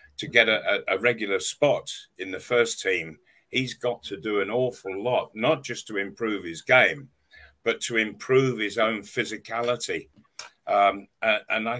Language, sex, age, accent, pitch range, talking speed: English, male, 50-69, British, 115-155 Hz, 155 wpm